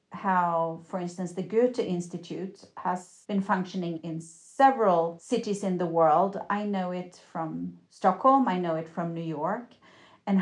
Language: Russian